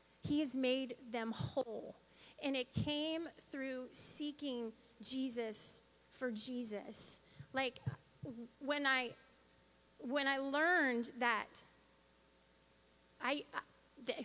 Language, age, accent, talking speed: English, 30-49, American, 95 wpm